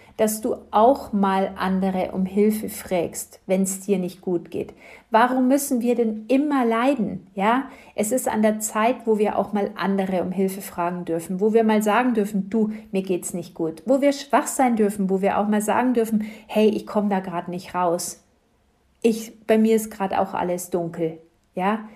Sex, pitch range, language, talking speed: female, 190-225 Hz, German, 195 wpm